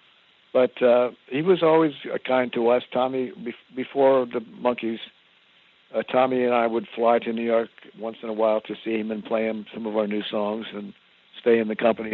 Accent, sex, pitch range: American, male, 105-120 Hz